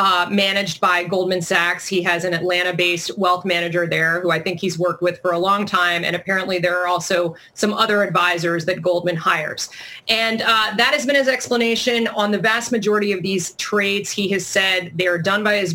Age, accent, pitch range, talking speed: 30-49, American, 180-220 Hz, 215 wpm